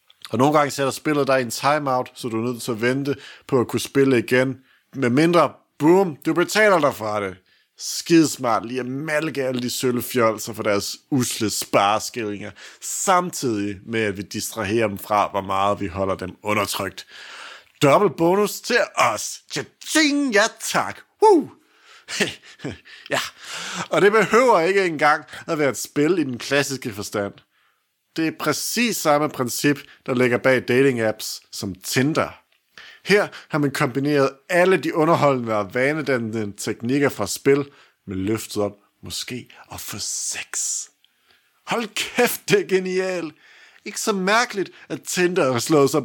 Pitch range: 115-175 Hz